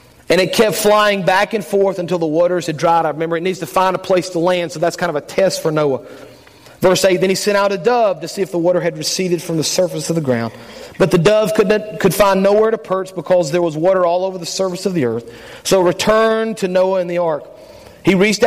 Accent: American